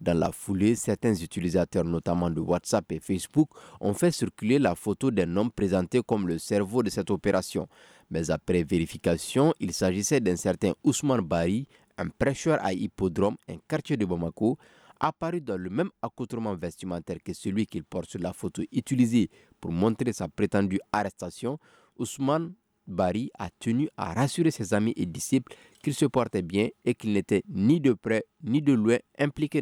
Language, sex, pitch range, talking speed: French, male, 90-130 Hz, 170 wpm